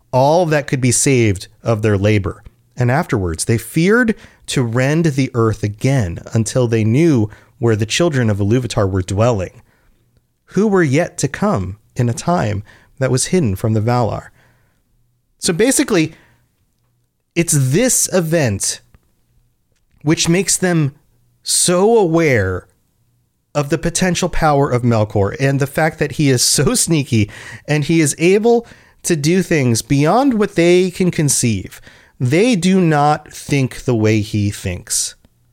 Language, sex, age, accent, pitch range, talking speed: English, male, 30-49, American, 115-165 Hz, 145 wpm